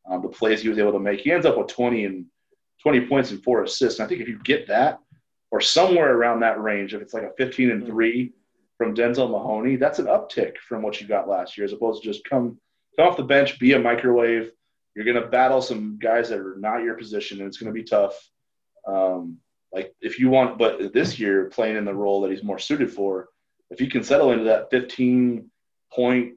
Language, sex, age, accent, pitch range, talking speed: English, male, 30-49, American, 100-130 Hz, 235 wpm